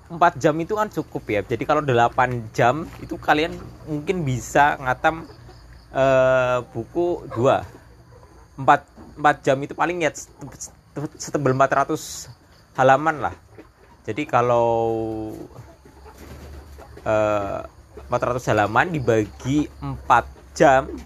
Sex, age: male, 20-39